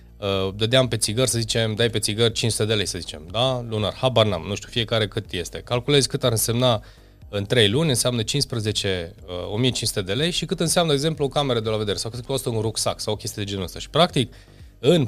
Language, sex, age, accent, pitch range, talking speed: Romanian, male, 30-49, native, 100-145 Hz, 235 wpm